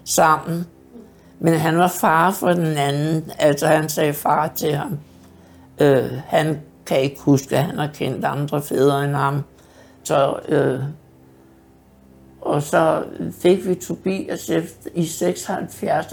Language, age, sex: Danish, 60-79, male